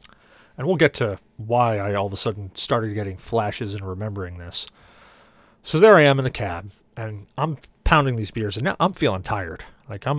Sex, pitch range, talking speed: male, 110-150 Hz, 205 wpm